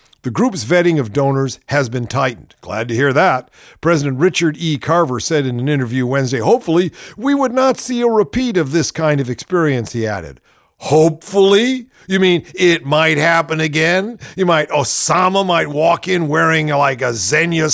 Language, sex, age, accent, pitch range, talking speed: English, male, 50-69, American, 120-175 Hz, 175 wpm